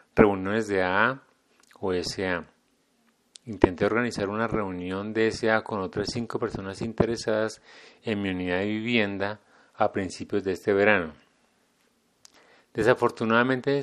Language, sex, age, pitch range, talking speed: English, male, 30-49, 95-120 Hz, 120 wpm